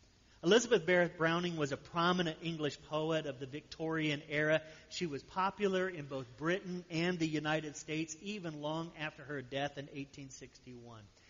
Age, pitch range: 40-59, 130-180 Hz